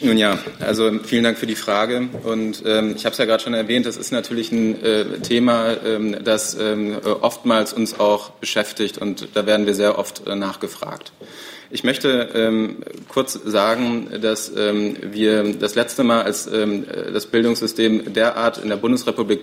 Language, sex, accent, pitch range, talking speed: German, male, German, 105-115 Hz, 175 wpm